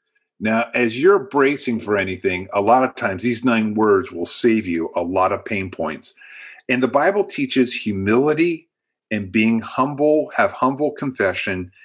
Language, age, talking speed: English, 50-69, 160 wpm